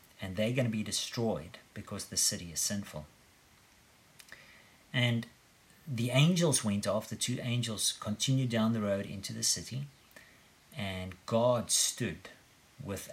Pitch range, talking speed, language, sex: 100-130 Hz, 135 wpm, English, male